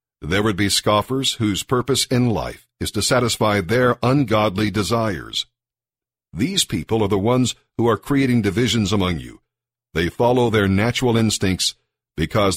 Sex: male